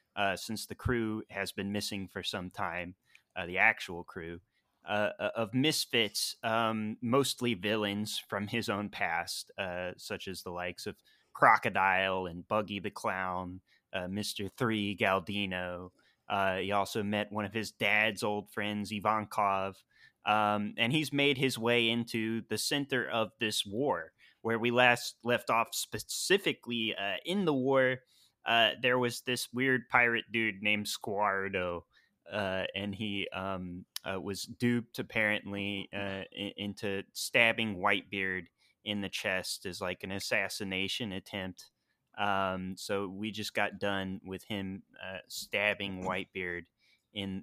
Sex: male